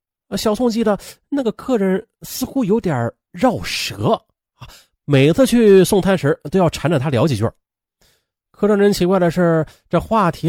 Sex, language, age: male, Chinese, 30-49